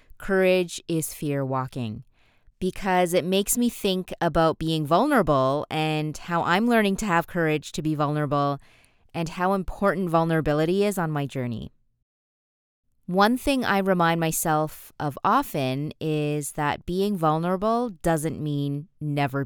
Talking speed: 135 wpm